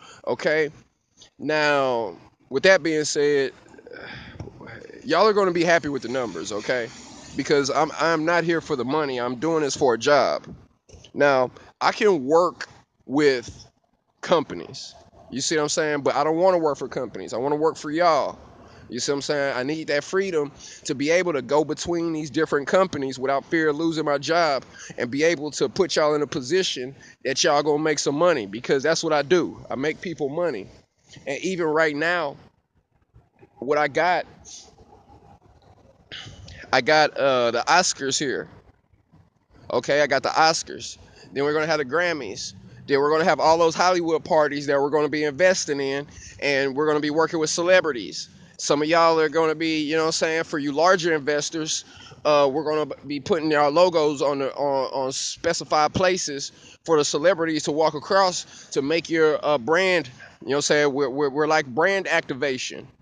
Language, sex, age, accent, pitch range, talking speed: English, male, 20-39, American, 145-165 Hz, 195 wpm